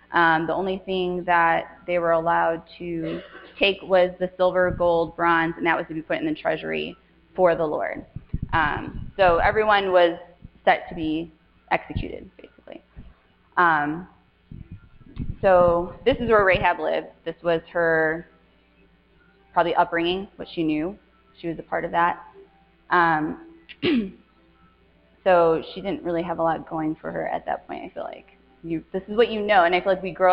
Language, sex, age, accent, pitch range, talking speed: English, female, 20-39, American, 160-185 Hz, 170 wpm